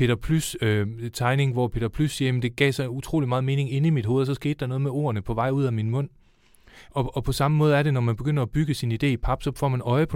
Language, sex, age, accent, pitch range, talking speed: Danish, male, 30-49, native, 115-140 Hz, 315 wpm